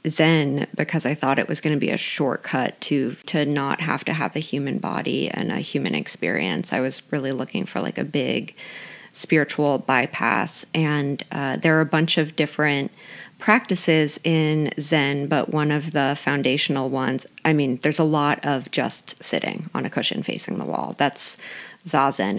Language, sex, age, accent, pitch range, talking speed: English, female, 30-49, American, 145-165 Hz, 180 wpm